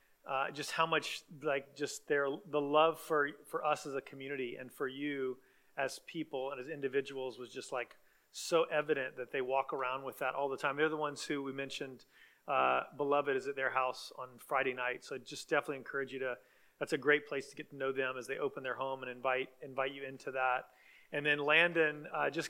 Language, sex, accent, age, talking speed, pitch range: English, male, American, 30-49, 225 wpm, 130-155 Hz